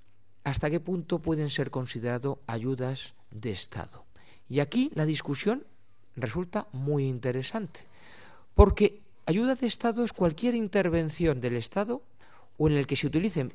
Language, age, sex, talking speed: Spanish, 50-69, male, 135 wpm